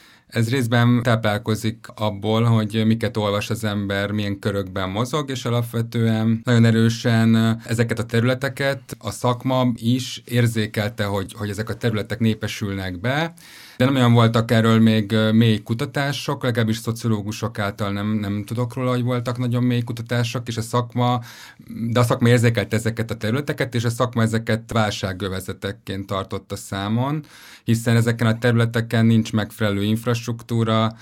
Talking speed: 145 wpm